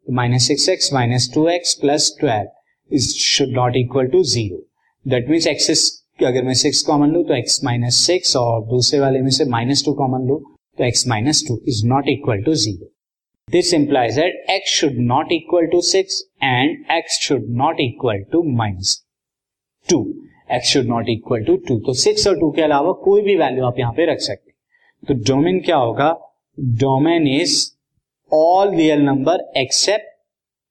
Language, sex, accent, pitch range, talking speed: Hindi, male, native, 130-175 Hz, 90 wpm